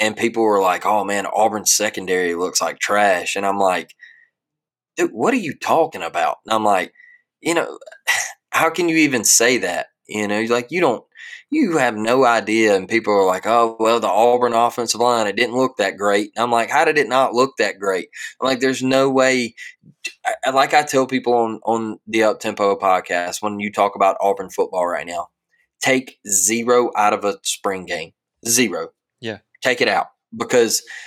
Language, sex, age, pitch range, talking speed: English, male, 20-39, 110-145 Hz, 200 wpm